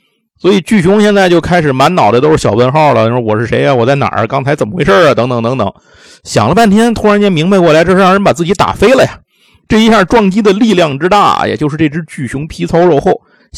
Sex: male